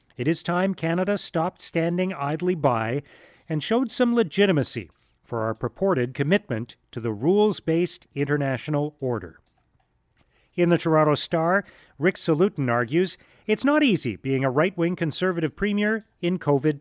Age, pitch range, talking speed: 40-59, 130-185 Hz, 135 wpm